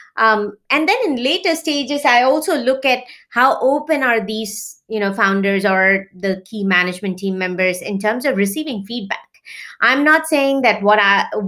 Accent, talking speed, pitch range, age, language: Indian, 180 wpm, 205-280 Hz, 30-49, English